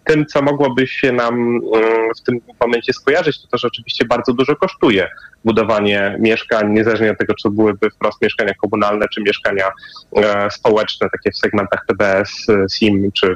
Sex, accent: male, native